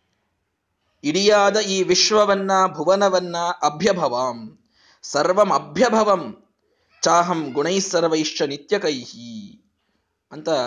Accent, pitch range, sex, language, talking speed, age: native, 125-195 Hz, male, Kannada, 65 wpm, 20-39